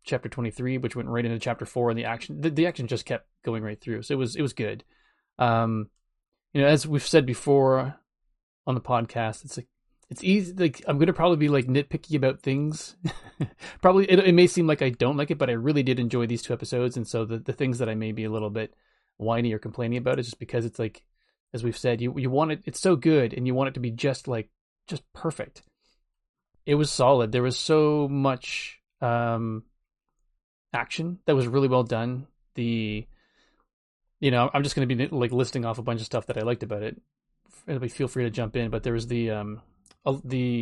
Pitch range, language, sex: 115-135 Hz, English, male